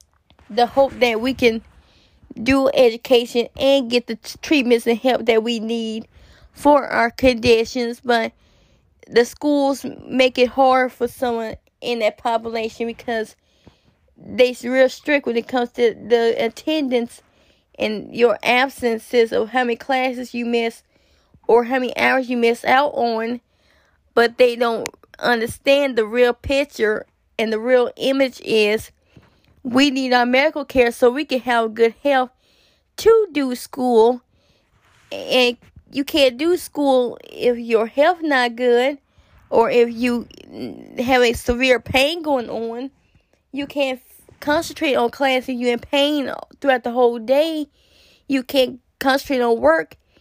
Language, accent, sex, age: English, American, female, 20-39